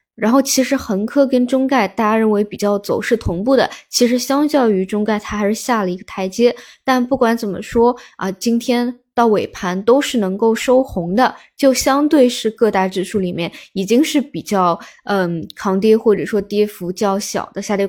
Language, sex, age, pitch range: Chinese, female, 20-39, 200-250 Hz